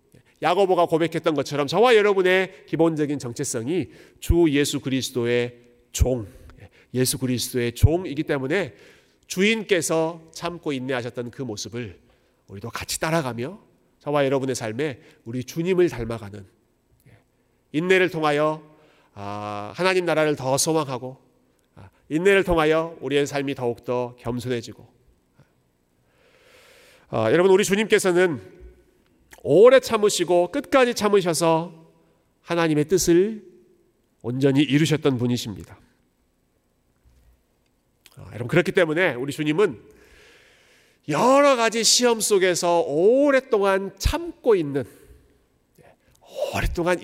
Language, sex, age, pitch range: Korean, male, 40-59, 120-180 Hz